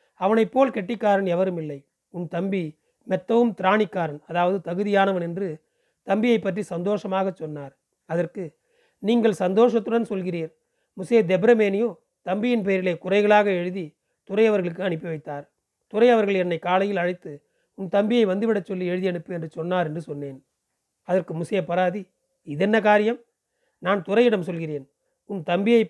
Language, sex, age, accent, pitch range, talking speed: Tamil, male, 40-59, native, 175-215 Hz, 120 wpm